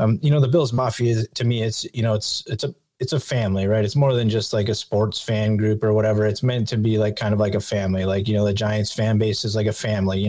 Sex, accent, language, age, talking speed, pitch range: male, American, English, 20-39, 305 wpm, 110-125 Hz